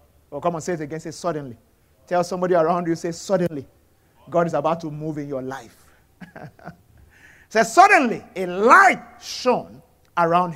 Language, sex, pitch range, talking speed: English, male, 130-210 Hz, 160 wpm